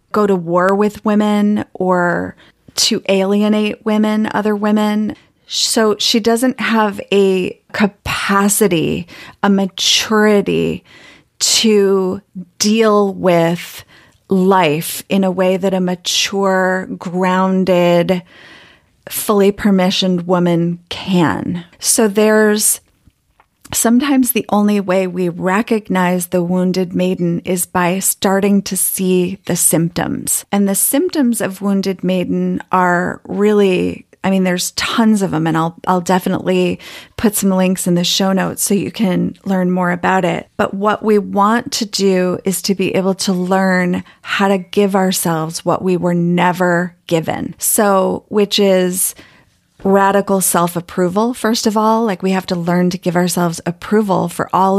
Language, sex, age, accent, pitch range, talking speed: English, female, 30-49, American, 180-205 Hz, 135 wpm